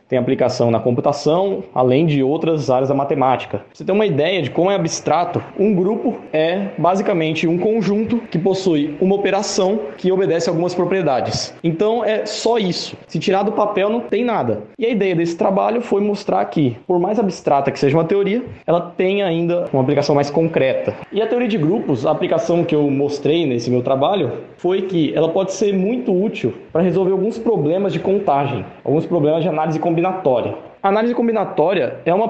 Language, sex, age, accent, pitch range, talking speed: Portuguese, male, 20-39, Brazilian, 155-200 Hz, 190 wpm